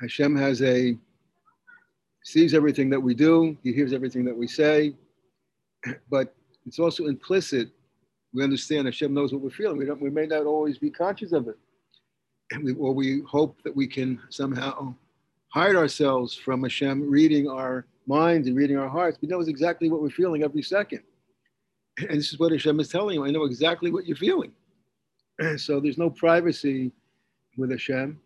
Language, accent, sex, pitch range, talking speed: English, American, male, 135-165 Hz, 175 wpm